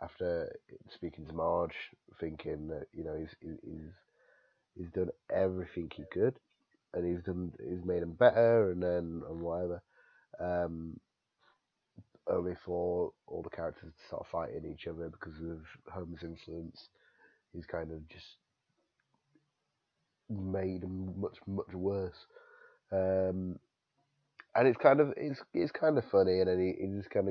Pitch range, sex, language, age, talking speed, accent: 85-100 Hz, male, English, 30-49, 145 wpm, British